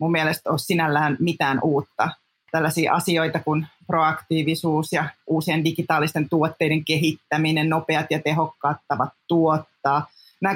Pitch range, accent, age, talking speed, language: 155-185 Hz, native, 20-39, 115 wpm, Finnish